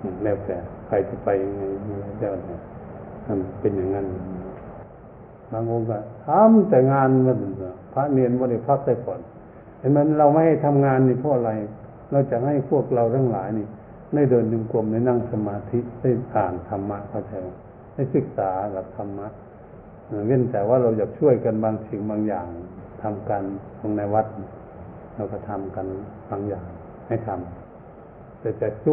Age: 70-89